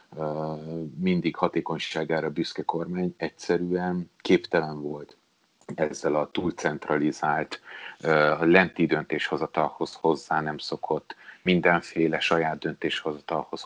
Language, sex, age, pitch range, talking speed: Hungarian, male, 30-49, 80-90 Hz, 75 wpm